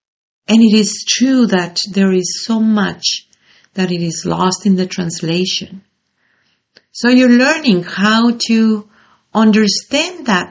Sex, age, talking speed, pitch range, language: female, 50-69, 130 wpm, 175-215 Hz, English